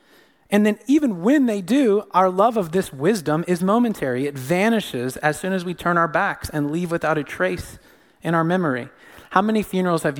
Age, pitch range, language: 30-49, 135-180 Hz, English